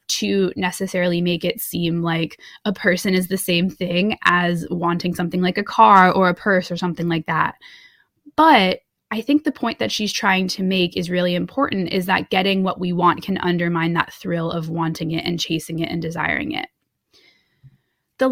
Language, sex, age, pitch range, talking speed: English, female, 20-39, 175-210 Hz, 190 wpm